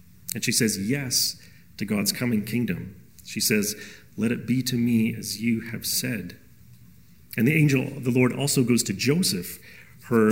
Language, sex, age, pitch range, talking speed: English, male, 40-59, 105-130 Hz, 175 wpm